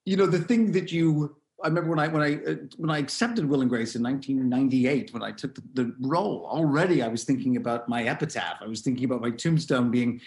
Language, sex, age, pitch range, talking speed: English, male, 40-59, 115-150 Hz, 235 wpm